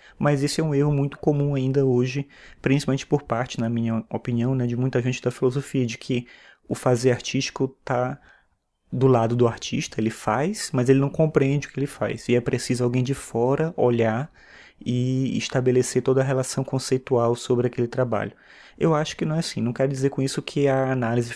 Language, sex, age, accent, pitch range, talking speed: Portuguese, male, 20-39, Brazilian, 120-135 Hz, 200 wpm